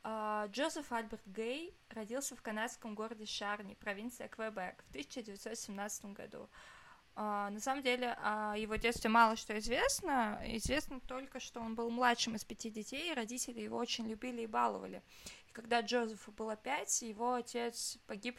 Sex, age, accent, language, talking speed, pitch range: female, 20-39, native, Russian, 150 wpm, 215-245 Hz